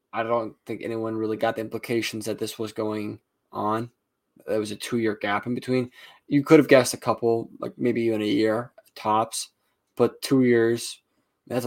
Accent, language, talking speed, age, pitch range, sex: American, English, 185 wpm, 20-39, 110-125 Hz, male